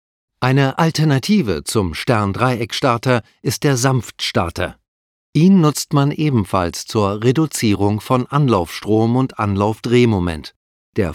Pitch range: 100-135 Hz